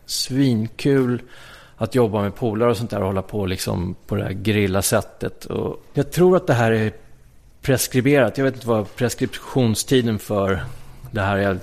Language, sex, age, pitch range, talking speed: English, male, 30-49, 100-125 Hz, 170 wpm